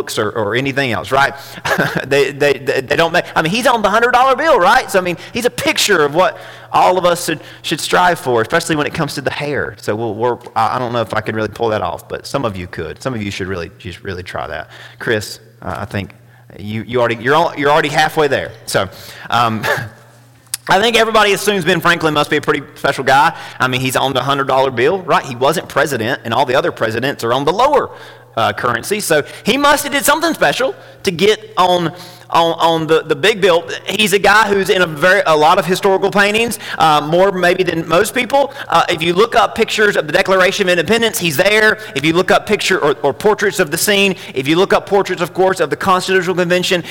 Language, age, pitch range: English, 30-49, 145-195 Hz